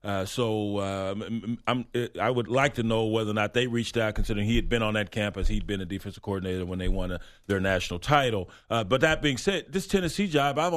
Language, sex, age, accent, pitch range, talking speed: English, male, 40-59, American, 105-125 Hz, 240 wpm